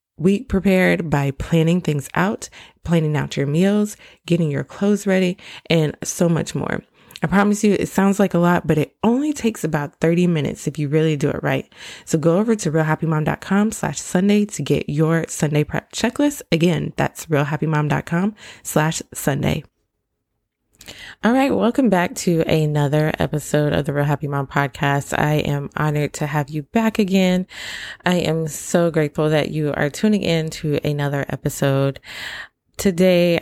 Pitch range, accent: 150-195 Hz, American